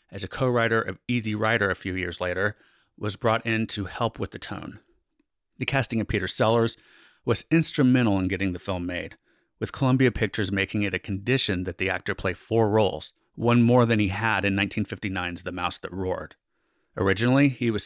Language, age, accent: English, 30-49, American